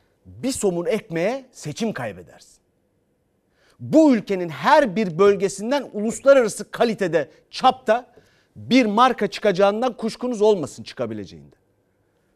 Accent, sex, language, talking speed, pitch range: native, male, Turkish, 90 wpm, 195-245 Hz